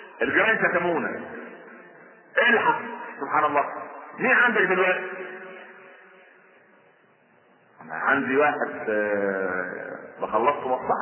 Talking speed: 75 wpm